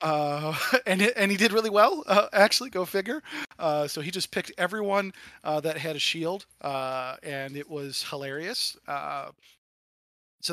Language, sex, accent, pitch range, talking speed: English, male, American, 140-180 Hz, 170 wpm